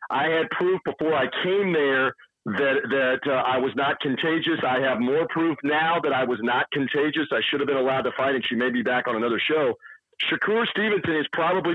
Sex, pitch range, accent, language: male, 135-180 Hz, American, English